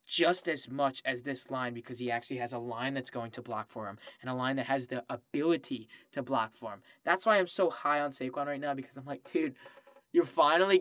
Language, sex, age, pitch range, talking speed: English, male, 10-29, 125-150 Hz, 245 wpm